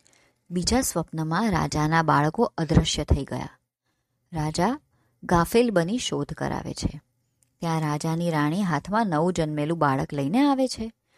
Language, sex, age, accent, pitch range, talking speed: Gujarati, male, 20-39, native, 150-200 Hz, 125 wpm